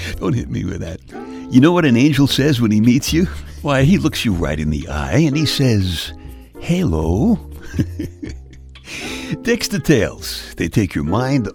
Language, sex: English, male